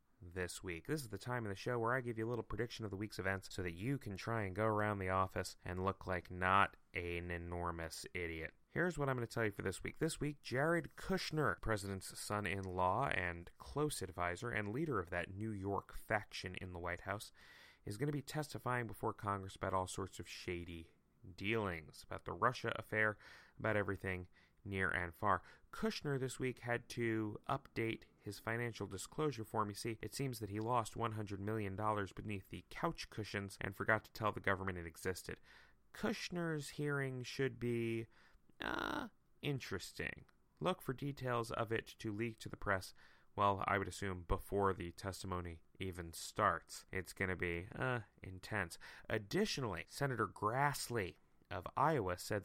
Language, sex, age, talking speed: English, male, 30-49, 185 wpm